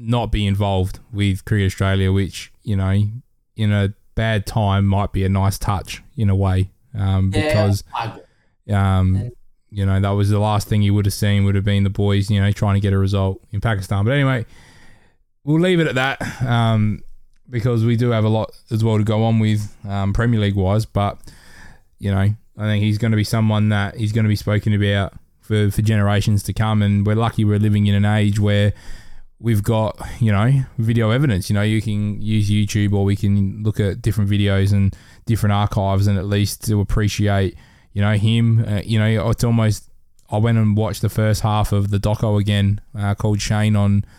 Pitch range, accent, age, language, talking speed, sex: 100-110 Hz, Australian, 20-39, English, 210 wpm, male